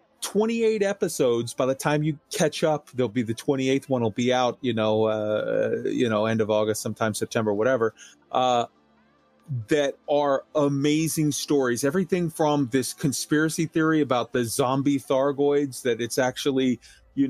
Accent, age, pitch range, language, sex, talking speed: American, 30-49, 120-150 Hz, English, male, 155 wpm